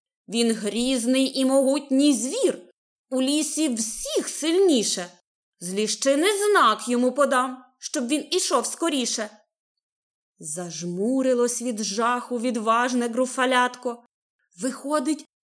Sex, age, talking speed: female, 20-39, 90 wpm